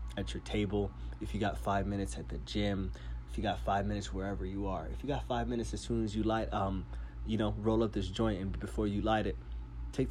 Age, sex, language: 20-39, male, English